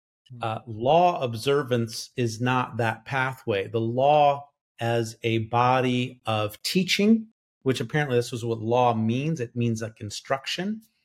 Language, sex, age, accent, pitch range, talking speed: English, male, 40-59, American, 120-155 Hz, 140 wpm